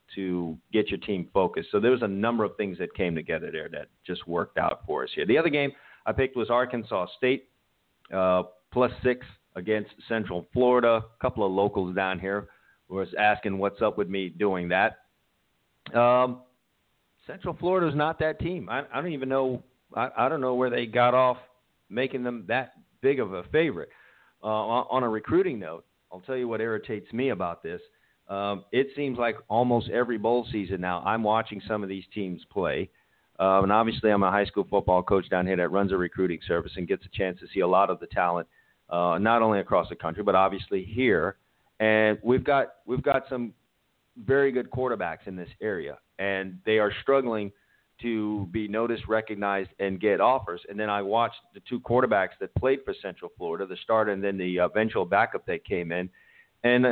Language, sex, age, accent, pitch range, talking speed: English, male, 50-69, American, 100-125 Hz, 195 wpm